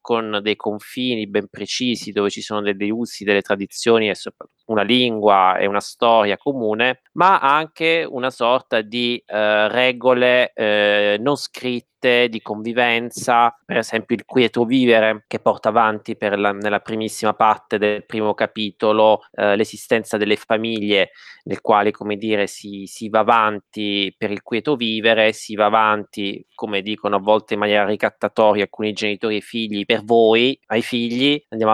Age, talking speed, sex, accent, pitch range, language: 20-39, 150 wpm, male, native, 105-120 Hz, Italian